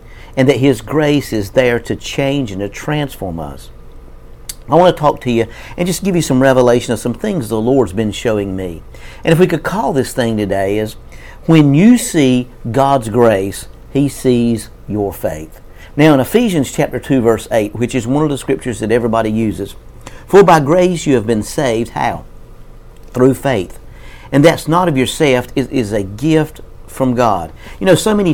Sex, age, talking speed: male, 50-69, 195 wpm